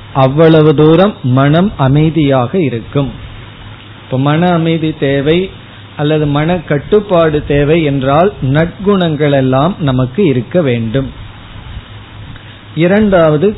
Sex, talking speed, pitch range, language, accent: male, 90 wpm, 130-170 Hz, Tamil, native